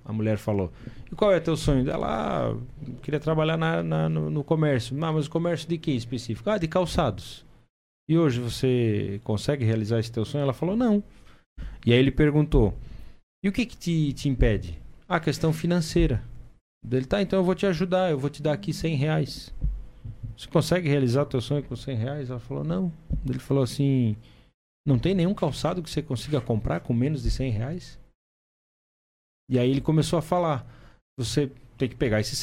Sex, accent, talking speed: male, Brazilian, 195 wpm